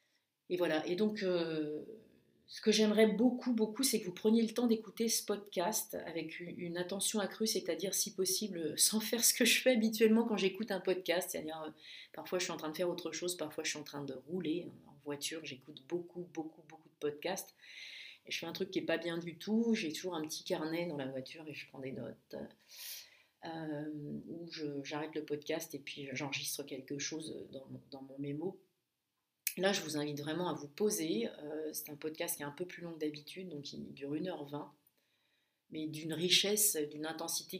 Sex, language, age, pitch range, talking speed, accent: female, French, 30-49, 150-185 Hz, 205 wpm, French